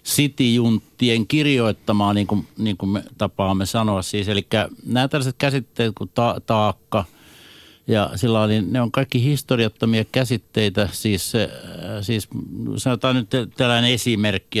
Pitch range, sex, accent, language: 105-125 Hz, male, native, Finnish